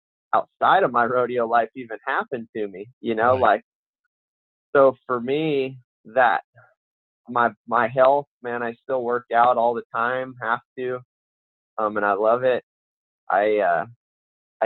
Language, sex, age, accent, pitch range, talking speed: English, male, 20-39, American, 115-130 Hz, 145 wpm